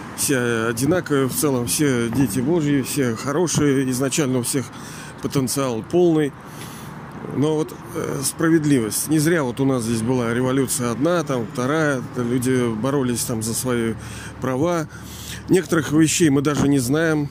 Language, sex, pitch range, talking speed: Russian, male, 120-150 Hz, 140 wpm